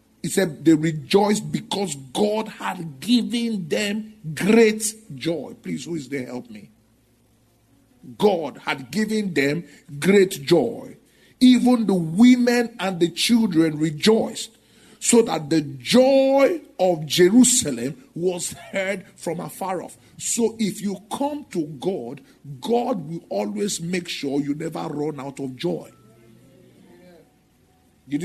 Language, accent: English, Nigerian